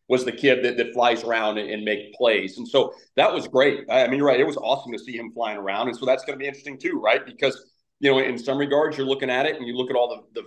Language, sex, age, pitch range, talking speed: English, male, 40-59, 120-145 Hz, 305 wpm